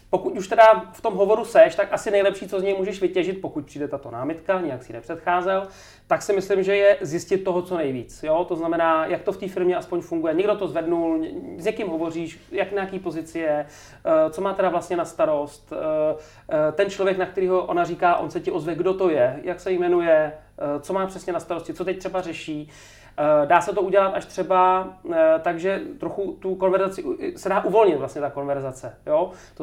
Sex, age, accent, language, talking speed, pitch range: male, 30-49, native, Czech, 200 wpm, 155-190 Hz